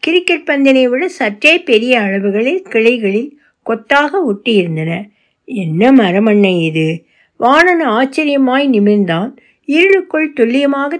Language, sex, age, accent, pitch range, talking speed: Tamil, female, 60-79, native, 200-285 Hz, 100 wpm